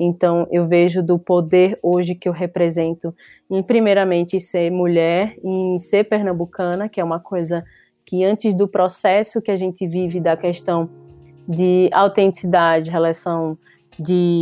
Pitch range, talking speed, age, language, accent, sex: 170-190 Hz, 140 wpm, 20-39, Portuguese, Brazilian, female